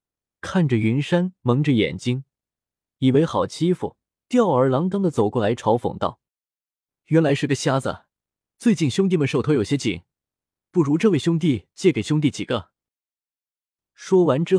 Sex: male